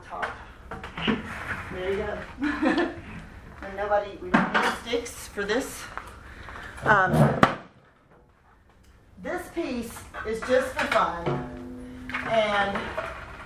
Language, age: English, 40-59